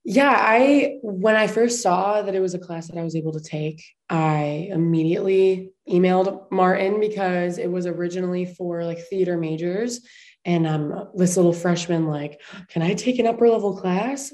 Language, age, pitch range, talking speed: English, 20-39, 175-210 Hz, 175 wpm